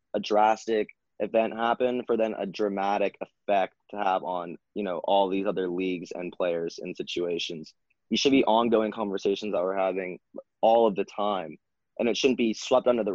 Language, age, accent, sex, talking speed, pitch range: English, 20-39, American, male, 185 wpm, 95-110 Hz